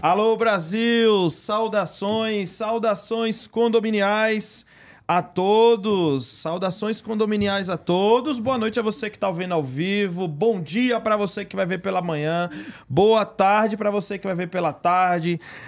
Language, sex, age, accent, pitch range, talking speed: Portuguese, male, 20-39, Brazilian, 180-225 Hz, 145 wpm